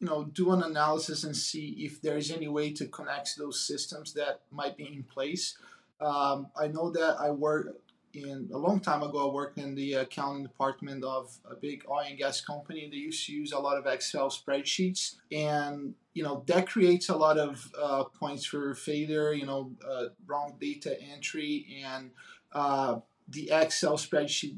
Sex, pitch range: male, 145-165 Hz